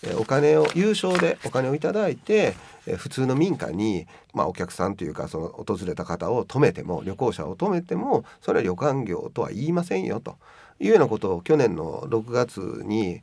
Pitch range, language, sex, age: 100-155 Hz, Japanese, male, 40-59